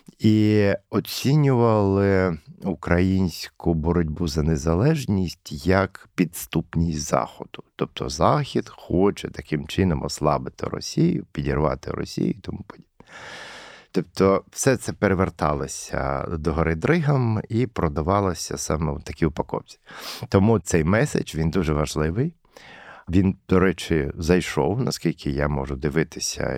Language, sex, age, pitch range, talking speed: Ukrainian, male, 50-69, 75-95 Hz, 105 wpm